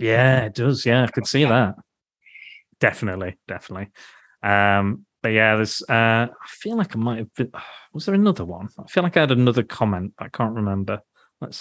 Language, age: English, 30-49